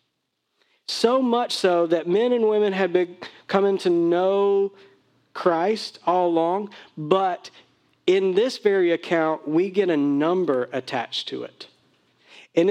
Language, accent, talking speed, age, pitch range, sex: English, American, 130 wpm, 40-59, 170-240 Hz, male